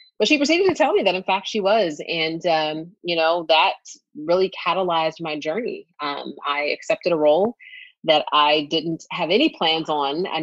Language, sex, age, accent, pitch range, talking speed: English, female, 30-49, American, 165-240 Hz, 190 wpm